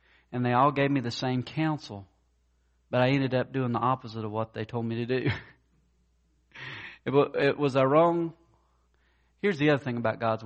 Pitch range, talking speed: 100-140 Hz, 195 wpm